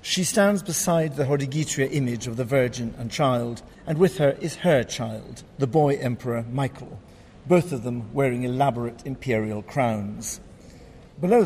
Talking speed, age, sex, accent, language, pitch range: 150 wpm, 50-69, male, British, English, 125-155 Hz